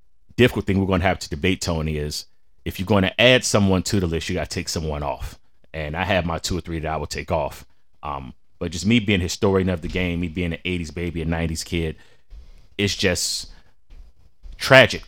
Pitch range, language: 75-90 Hz, English